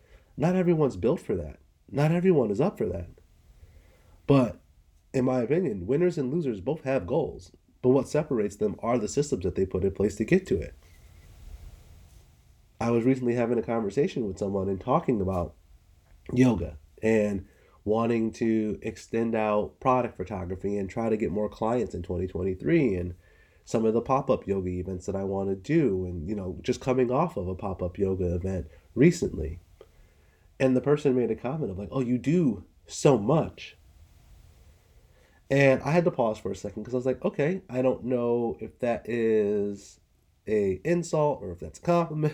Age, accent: 30-49, American